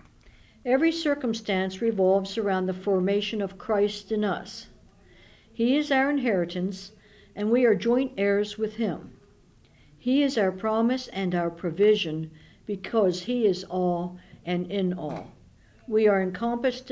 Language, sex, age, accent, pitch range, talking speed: English, female, 60-79, American, 185-235 Hz, 135 wpm